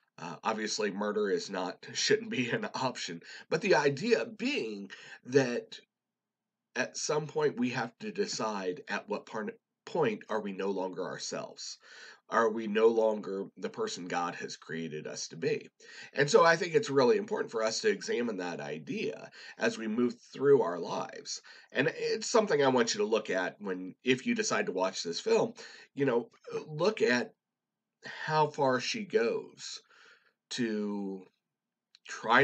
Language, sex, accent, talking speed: English, male, American, 165 wpm